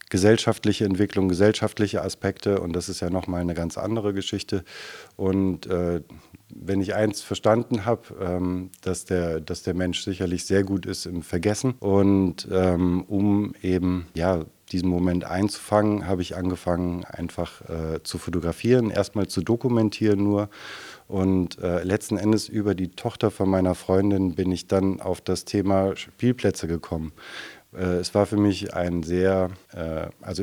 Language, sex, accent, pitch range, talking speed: German, male, German, 90-100 Hz, 150 wpm